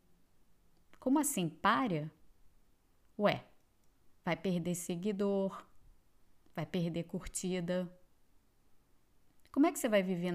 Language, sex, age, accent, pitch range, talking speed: Portuguese, female, 20-39, Brazilian, 150-200 Hz, 95 wpm